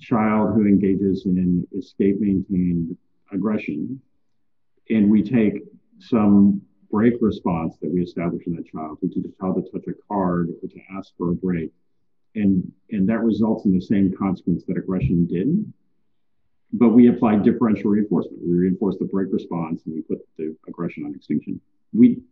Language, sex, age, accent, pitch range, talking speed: English, male, 50-69, American, 90-110 Hz, 165 wpm